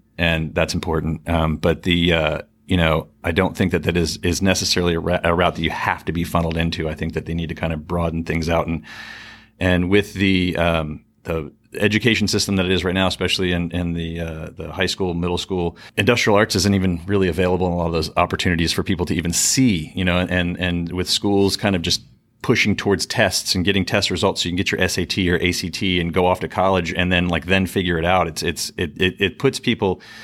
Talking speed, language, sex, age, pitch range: 240 wpm, English, male, 40-59, 85-100 Hz